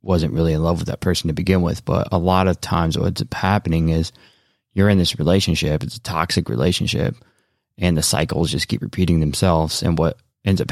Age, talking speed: 20-39, 205 wpm